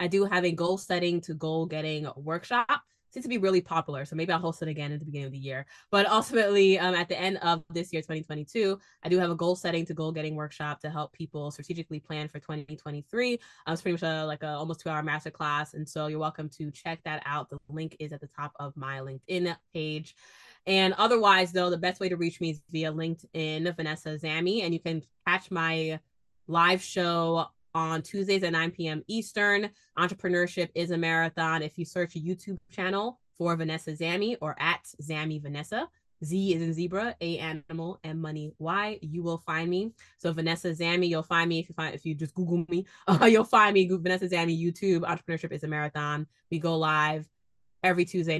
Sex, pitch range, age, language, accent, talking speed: female, 155-180 Hz, 20-39, English, American, 215 wpm